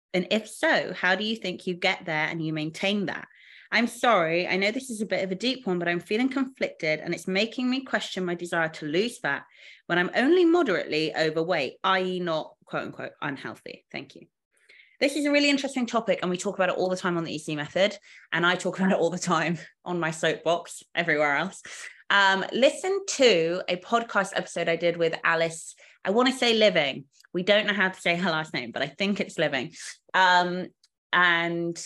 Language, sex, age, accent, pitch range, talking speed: English, female, 20-39, British, 170-225 Hz, 215 wpm